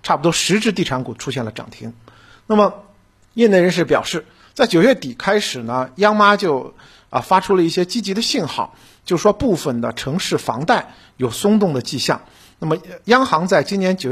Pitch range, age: 130-195 Hz, 50-69